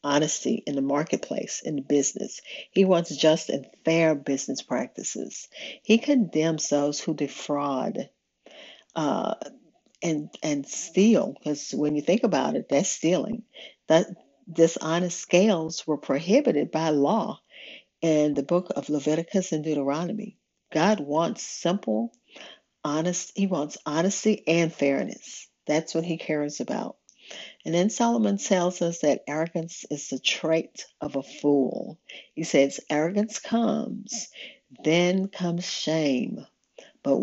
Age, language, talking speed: 50-69, English, 130 wpm